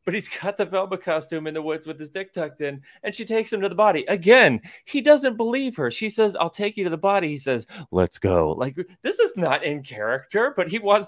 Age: 30-49